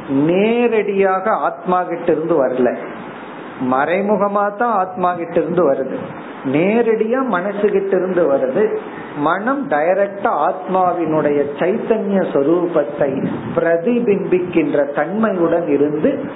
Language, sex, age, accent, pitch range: Tamil, male, 50-69, native, 160-215 Hz